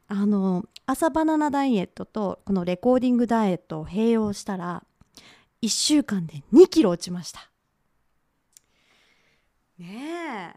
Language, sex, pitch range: Japanese, female, 190-315 Hz